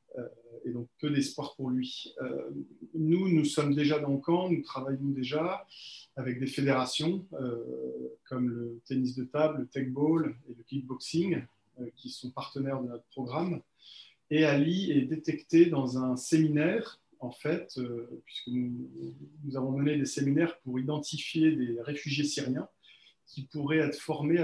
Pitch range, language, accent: 125-150 Hz, French, French